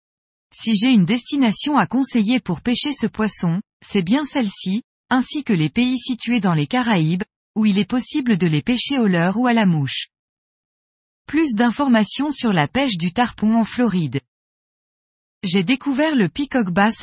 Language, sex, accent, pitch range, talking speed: French, female, French, 185-255 Hz, 170 wpm